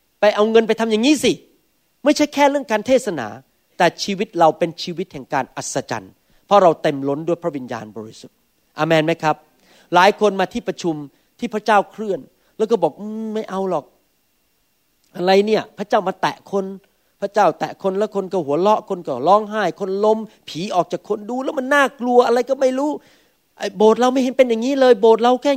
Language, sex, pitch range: Thai, male, 175-235 Hz